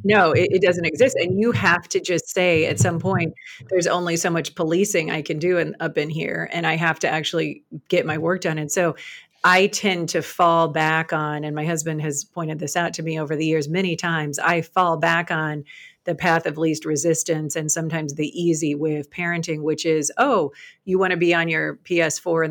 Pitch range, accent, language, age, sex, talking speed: 155-175 Hz, American, English, 40-59, female, 220 wpm